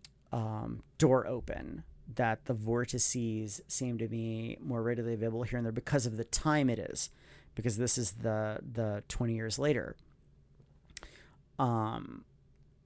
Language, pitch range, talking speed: English, 115-135 Hz, 140 wpm